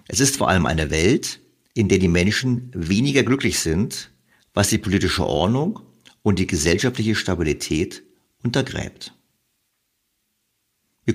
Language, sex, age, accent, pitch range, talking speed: German, male, 50-69, German, 90-115 Hz, 125 wpm